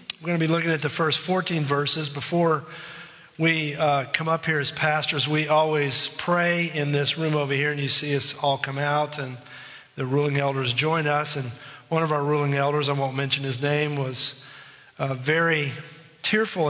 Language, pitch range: English, 140-165 Hz